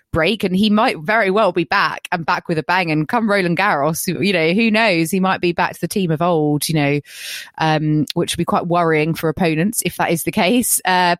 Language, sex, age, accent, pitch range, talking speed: English, female, 20-39, British, 145-180 Hz, 245 wpm